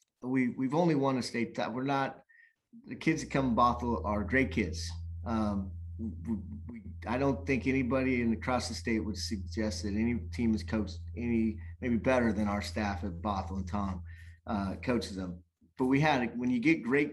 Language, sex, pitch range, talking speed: English, male, 100-130 Hz, 195 wpm